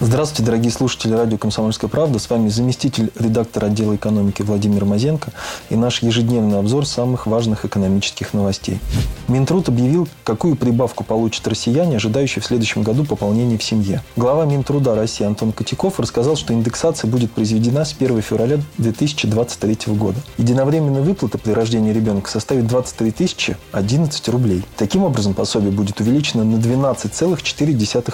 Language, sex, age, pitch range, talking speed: Russian, male, 20-39, 110-135 Hz, 140 wpm